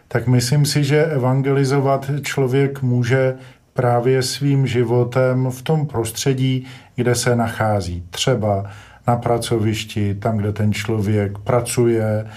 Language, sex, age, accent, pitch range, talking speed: Czech, male, 50-69, native, 115-130 Hz, 115 wpm